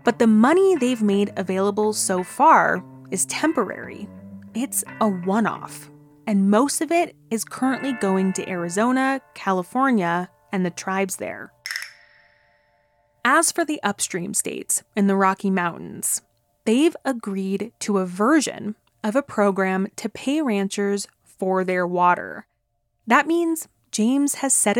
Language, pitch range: English, 180-250 Hz